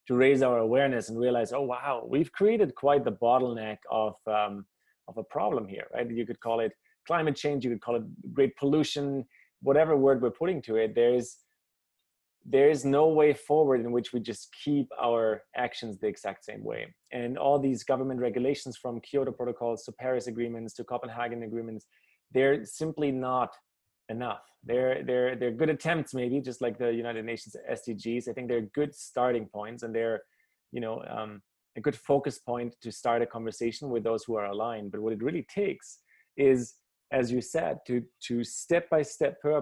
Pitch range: 115-140 Hz